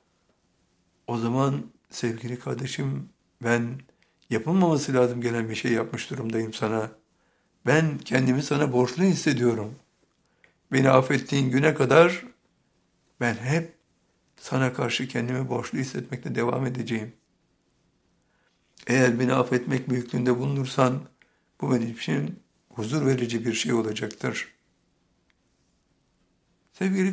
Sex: male